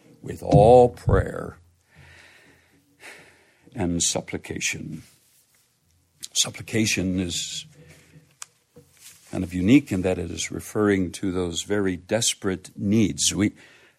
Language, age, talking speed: English, 60-79, 90 wpm